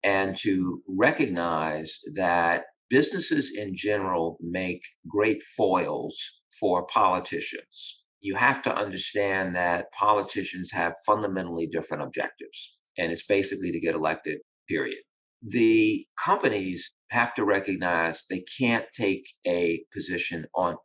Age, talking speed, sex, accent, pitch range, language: 50-69, 115 wpm, male, American, 85-105 Hz, English